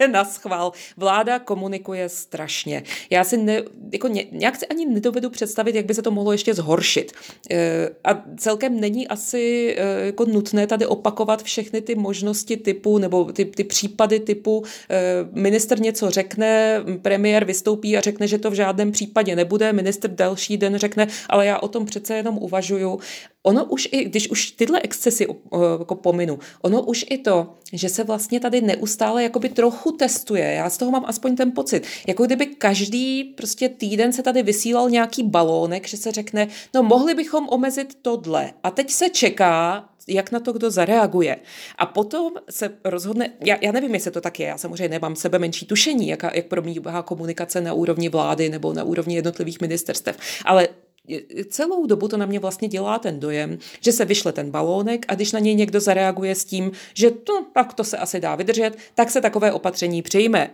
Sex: female